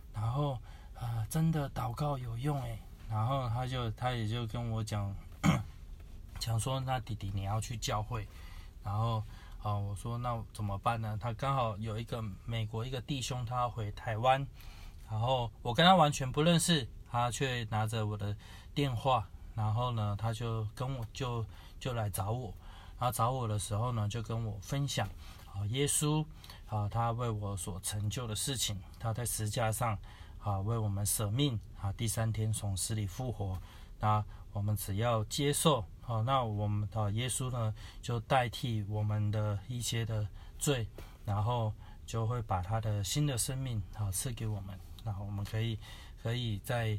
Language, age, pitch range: Chinese, 20-39, 100-120 Hz